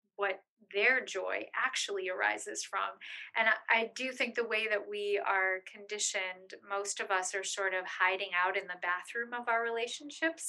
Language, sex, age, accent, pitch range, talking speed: English, female, 30-49, American, 205-280 Hz, 175 wpm